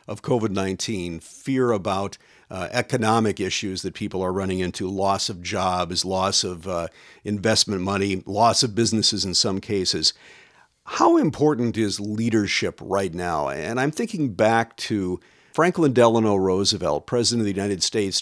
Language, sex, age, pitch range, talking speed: English, male, 50-69, 95-115 Hz, 150 wpm